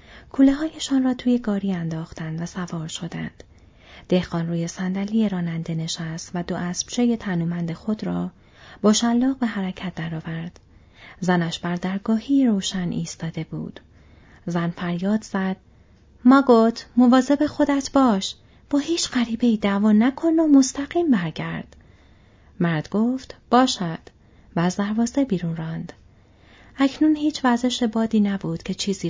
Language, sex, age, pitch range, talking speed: Persian, female, 30-49, 170-230 Hz, 130 wpm